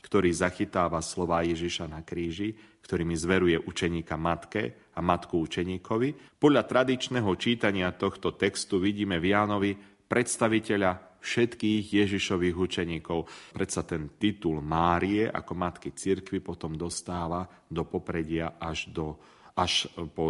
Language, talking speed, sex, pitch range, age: Slovak, 115 wpm, male, 85-105 Hz, 30-49